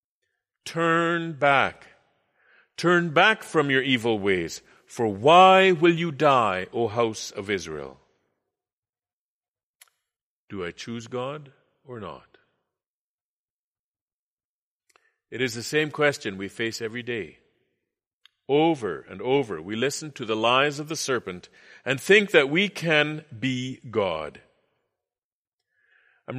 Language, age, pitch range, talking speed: English, 50-69, 125-170 Hz, 115 wpm